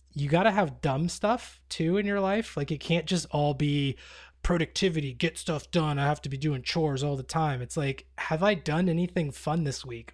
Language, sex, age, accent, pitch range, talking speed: English, male, 20-39, American, 130-160 Hz, 225 wpm